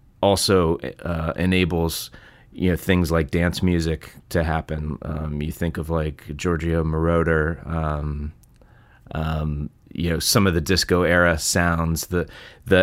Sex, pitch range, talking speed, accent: male, 80-95 Hz, 135 wpm, American